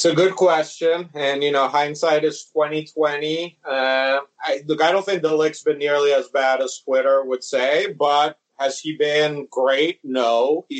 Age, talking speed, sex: 30-49, 195 wpm, male